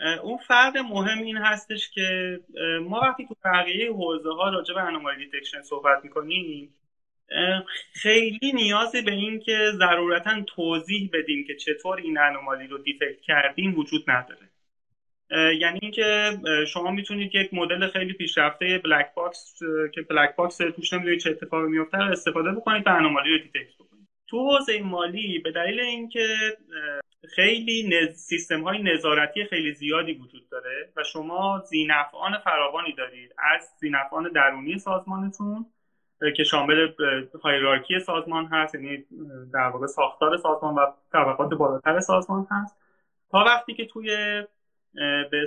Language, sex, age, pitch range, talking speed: Persian, male, 30-49, 145-195 Hz, 135 wpm